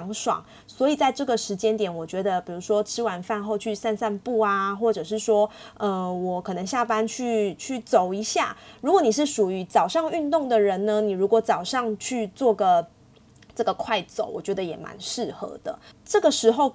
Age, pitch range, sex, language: 20-39, 200-255 Hz, female, Chinese